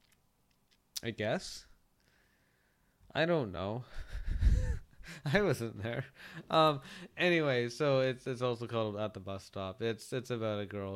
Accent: American